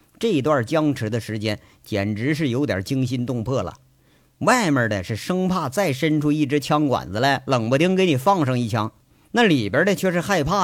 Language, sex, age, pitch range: Chinese, male, 50-69, 130-185 Hz